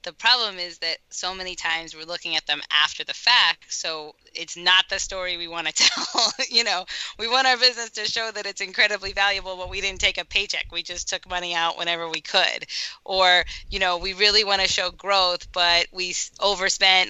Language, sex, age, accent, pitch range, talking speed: English, female, 20-39, American, 165-200 Hz, 215 wpm